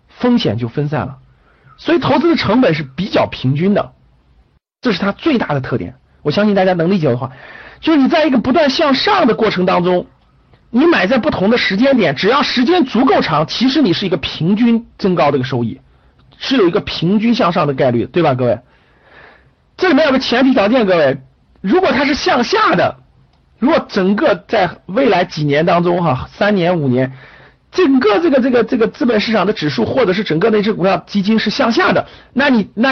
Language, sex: Chinese, male